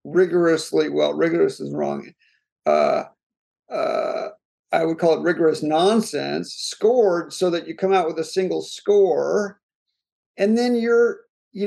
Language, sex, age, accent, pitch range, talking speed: English, male, 50-69, American, 165-210 Hz, 140 wpm